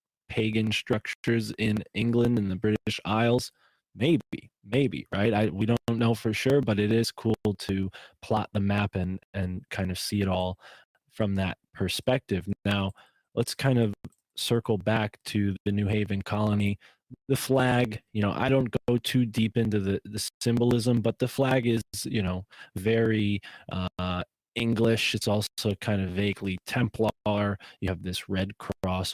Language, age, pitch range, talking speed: English, 20-39, 100-115 Hz, 165 wpm